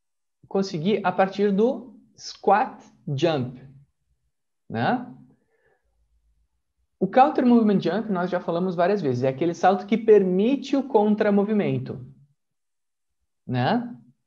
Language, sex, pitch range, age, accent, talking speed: Portuguese, male, 140-215 Hz, 20-39, Brazilian, 105 wpm